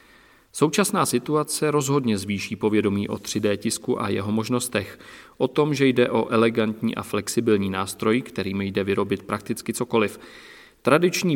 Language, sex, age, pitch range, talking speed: Czech, male, 40-59, 105-130 Hz, 135 wpm